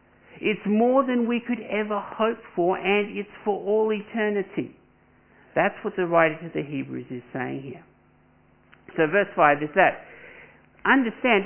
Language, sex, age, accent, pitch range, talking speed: English, male, 60-79, Australian, 135-190 Hz, 150 wpm